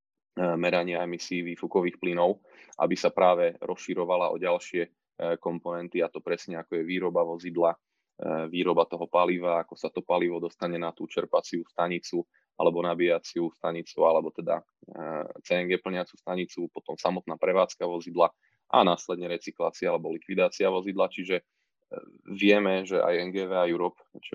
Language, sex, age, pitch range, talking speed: Slovak, male, 20-39, 85-95 Hz, 140 wpm